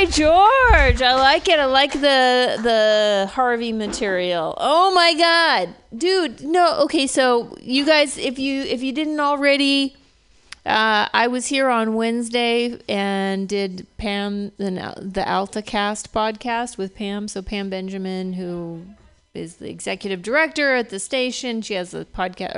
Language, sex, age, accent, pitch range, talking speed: English, female, 30-49, American, 195-275 Hz, 145 wpm